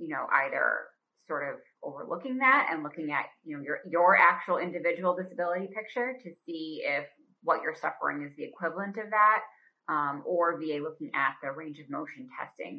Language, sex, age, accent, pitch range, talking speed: English, female, 30-49, American, 150-195 Hz, 185 wpm